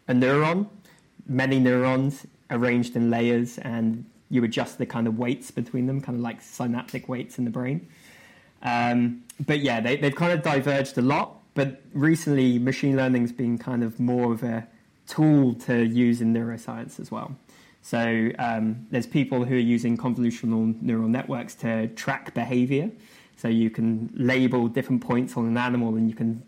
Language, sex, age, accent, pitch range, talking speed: English, male, 20-39, British, 115-135 Hz, 170 wpm